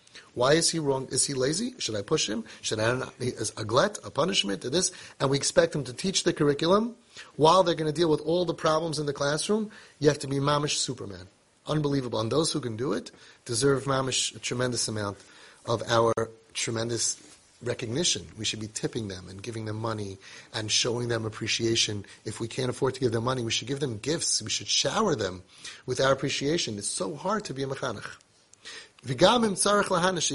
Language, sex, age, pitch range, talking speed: English, male, 30-49, 120-170 Hz, 205 wpm